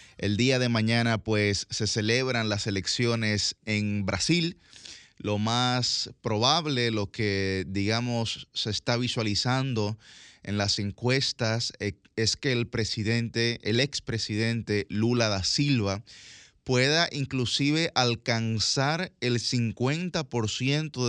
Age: 30-49